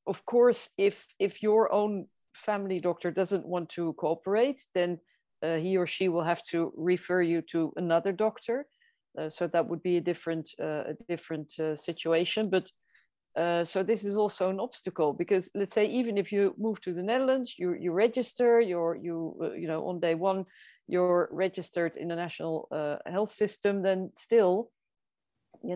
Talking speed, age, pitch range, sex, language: 180 wpm, 40-59, 170-210 Hz, female, English